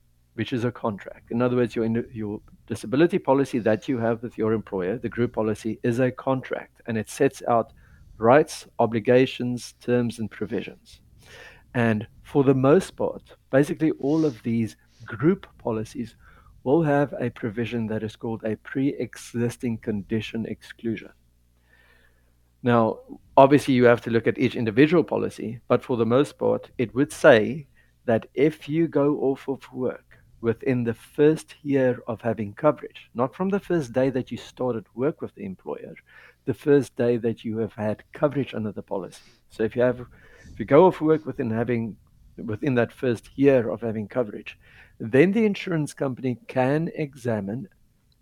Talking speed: 165 wpm